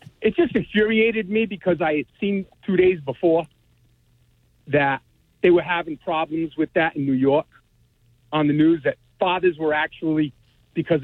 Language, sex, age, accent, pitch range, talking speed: English, male, 50-69, American, 125-200 Hz, 160 wpm